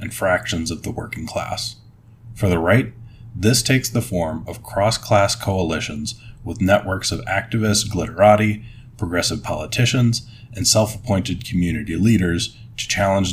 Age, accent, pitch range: 30-49, American, 95-115 Hz